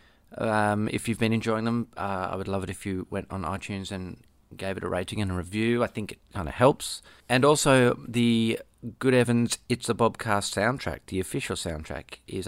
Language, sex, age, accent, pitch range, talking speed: English, male, 30-49, Australian, 95-120 Hz, 205 wpm